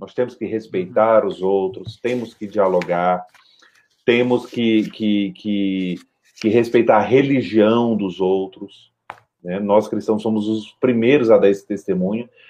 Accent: Brazilian